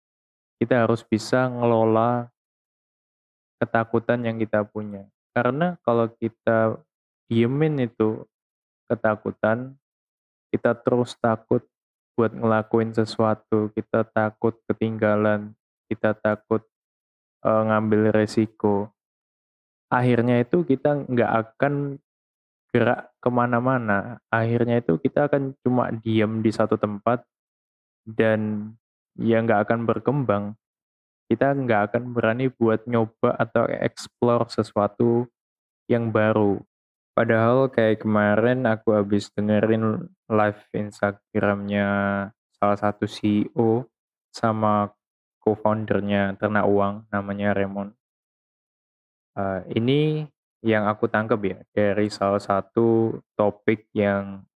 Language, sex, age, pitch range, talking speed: Indonesian, male, 20-39, 105-120 Hz, 95 wpm